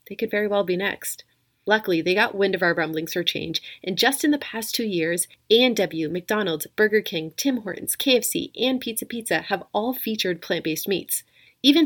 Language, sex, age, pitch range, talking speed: English, female, 30-49, 175-230 Hz, 190 wpm